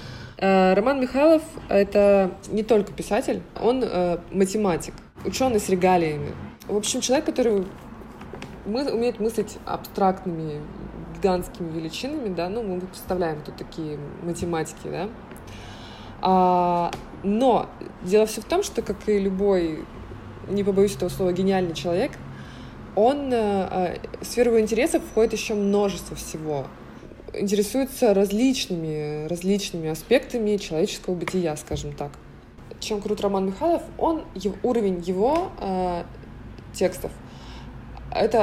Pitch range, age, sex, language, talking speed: 175-210 Hz, 20-39, female, Russian, 110 wpm